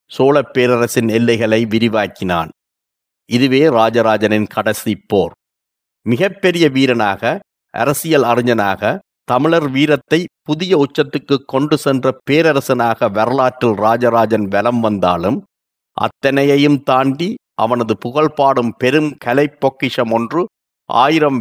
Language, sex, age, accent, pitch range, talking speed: Tamil, male, 50-69, native, 115-145 Hz, 85 wpm